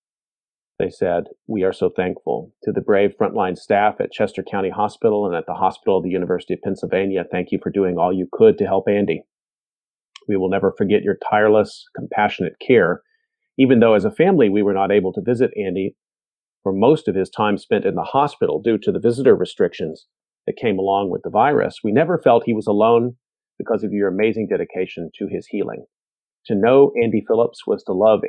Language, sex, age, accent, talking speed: English, male, 40-59, American, 200 wpm